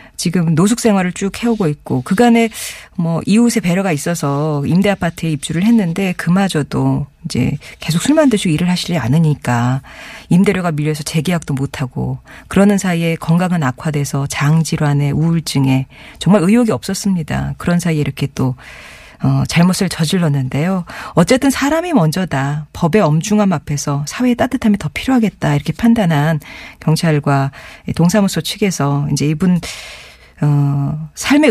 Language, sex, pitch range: Korean, female, 145-195 Hz